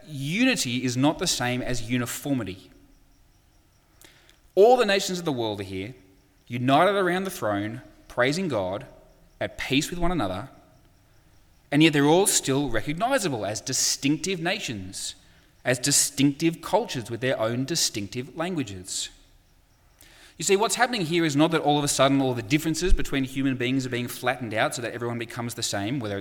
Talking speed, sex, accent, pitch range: 165 wpm, male, Australian, 115-150 Hz